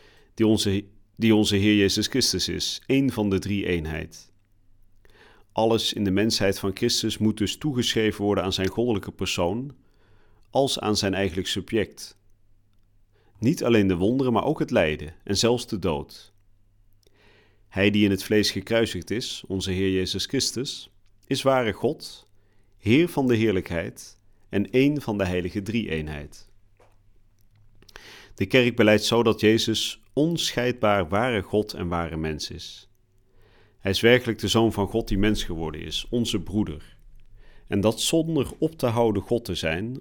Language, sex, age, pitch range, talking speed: Dutch, male, 40-59, 95-115 Hz, 155 wpm